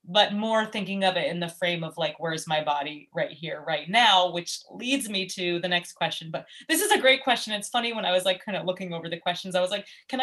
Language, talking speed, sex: English, 270 wpm, female